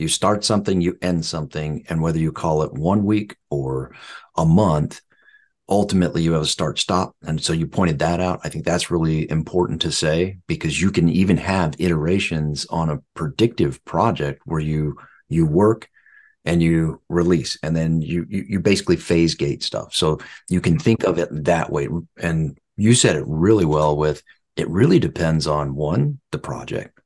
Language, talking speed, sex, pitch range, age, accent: English, 185 wpm, male, 75-95 Hz, 40-59, American